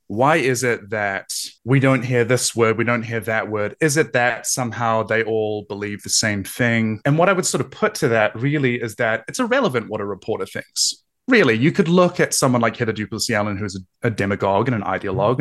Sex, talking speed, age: male, 235 wpm, 20-39